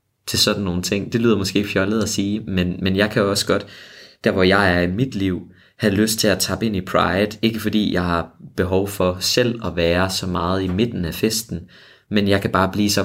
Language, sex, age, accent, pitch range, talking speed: Danish, male, 20-39, native, 90-110 Hz, 245 wpm